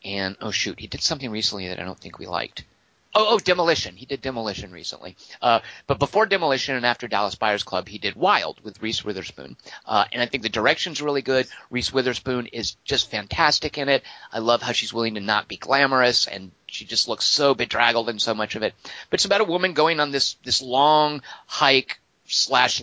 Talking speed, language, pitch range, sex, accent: 215 wpm, English, 115-175 Hz, male, American